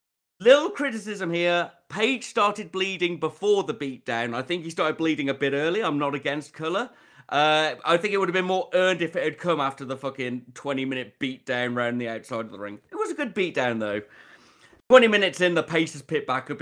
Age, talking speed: 30-49, 215 wpm